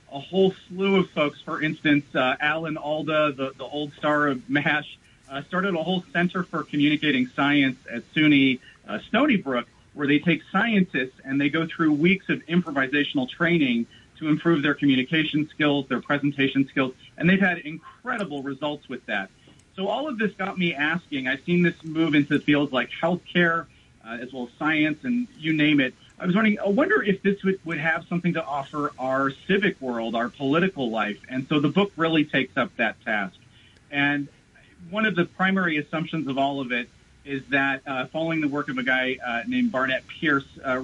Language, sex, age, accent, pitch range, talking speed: English, male, 40-59, American, 135-165 Hz, 195 wpm